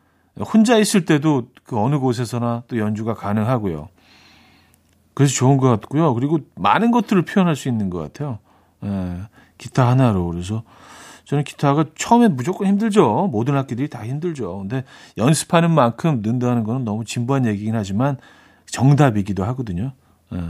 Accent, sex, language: native, male, Korean